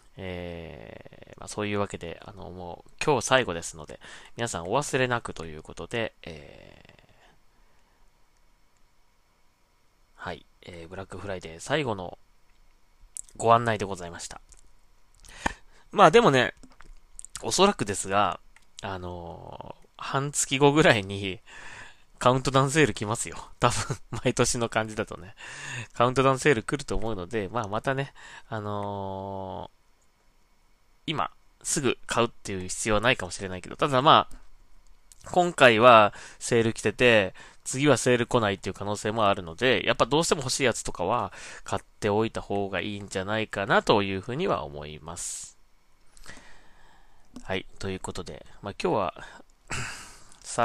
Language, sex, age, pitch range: Japanese, male, 20-39, 95-120 Hz